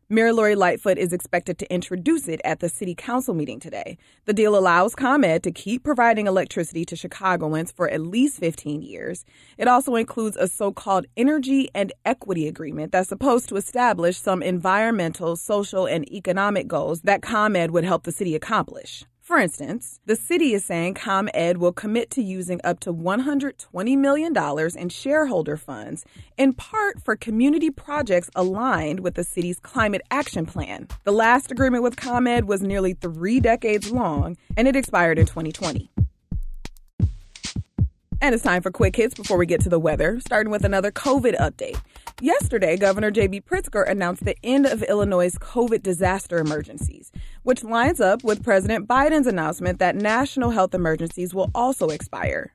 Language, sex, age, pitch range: English, female, 30-49, 175-245 Hz